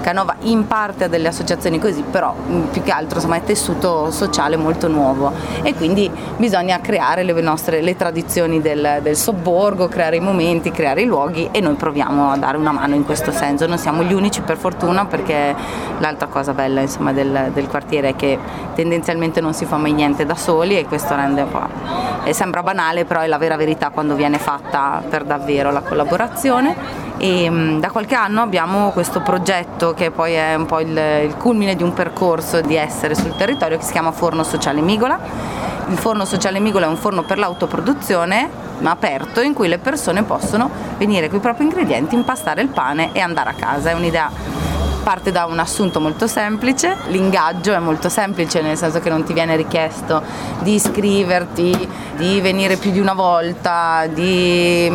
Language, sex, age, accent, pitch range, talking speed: Italian, female, 30-49, native, 160-195 Hz, 185 wpm